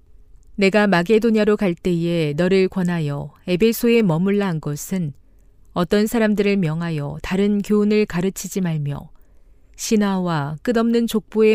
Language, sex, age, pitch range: Korean, female, 40-59, 150-215 Hz